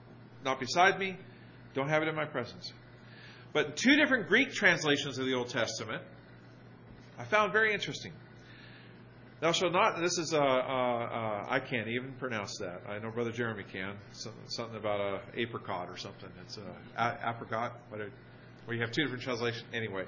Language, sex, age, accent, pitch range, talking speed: English, male, 40-59, American, 115-140 Hz, 180 wpm